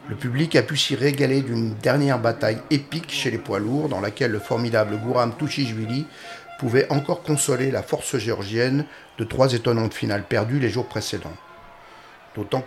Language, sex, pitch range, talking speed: French, male, 110-135 Hz, 165 wpm